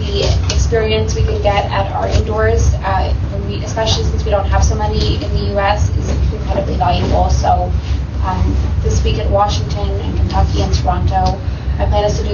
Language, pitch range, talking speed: English, 80-100 Hz, 180 wpm